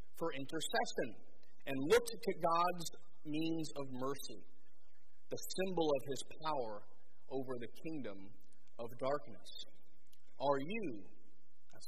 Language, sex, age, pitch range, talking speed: English, male, 30-49, 120-165 Hz, 105 wpm